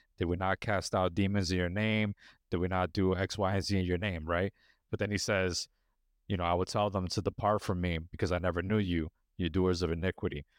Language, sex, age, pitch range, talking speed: English, male, 30-49, 95-115 Hz, 250 wpm